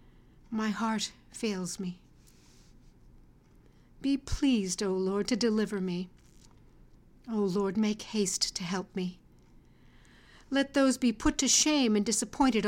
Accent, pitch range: American, 185-240 Hz